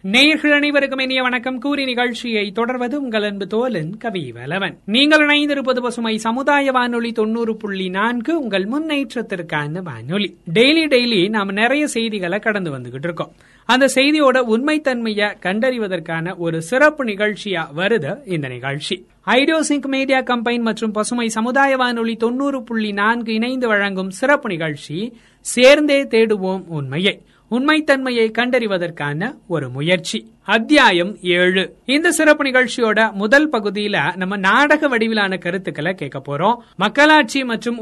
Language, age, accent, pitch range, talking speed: Tamil, 30-49, native, 185-255 Hz, 80 wpm